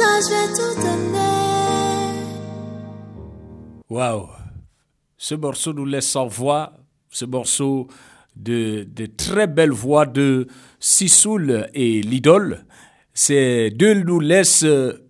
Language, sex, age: English, male, 50-69